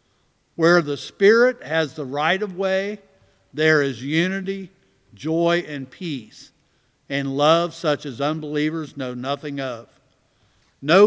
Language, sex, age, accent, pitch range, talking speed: English, male, 50-69, American, 130-155 Hz, 125 wpm